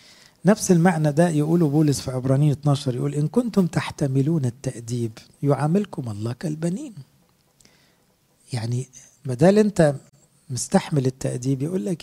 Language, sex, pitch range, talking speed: English, male, 135-170 Hz, 110 wpm